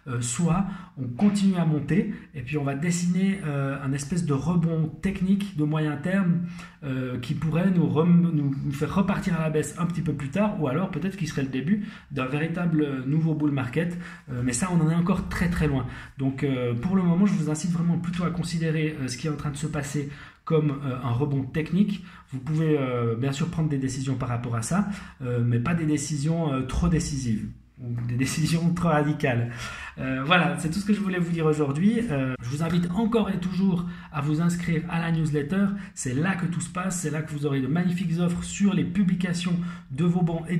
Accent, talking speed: French, 230 wpm